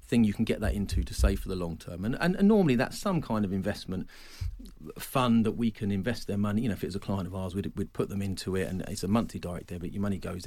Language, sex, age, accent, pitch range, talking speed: English, male, 40-59, British, 95-115 Hz, 290 wpm